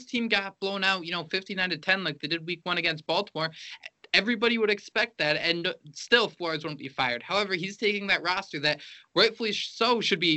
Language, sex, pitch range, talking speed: English, male, 140-180 Hz, 210 wpm